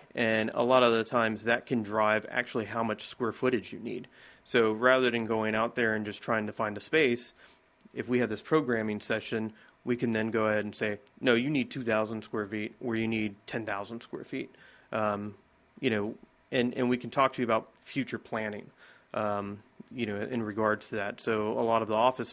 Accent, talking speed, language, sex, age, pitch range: American, 215 wpm, English, male, 30-49, 110-125 Hz